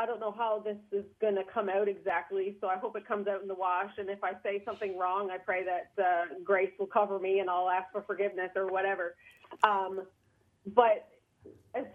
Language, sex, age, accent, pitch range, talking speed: English, female, 30-49, American, 190-235 Hz, 220 wpm